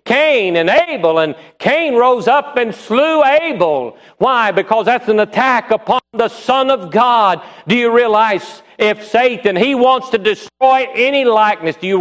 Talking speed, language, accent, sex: 165 wpm, English, American, male